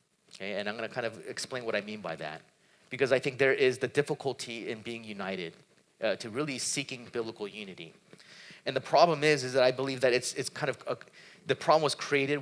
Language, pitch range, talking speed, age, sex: English, 125-160 Hz, 225 wpm, 30-49, male